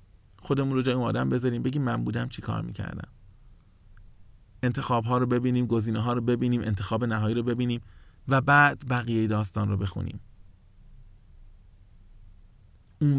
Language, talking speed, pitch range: Persian, 135 wpm, 100-125 Hz